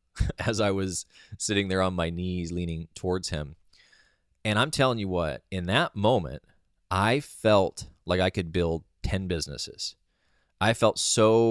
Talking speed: 155 wpm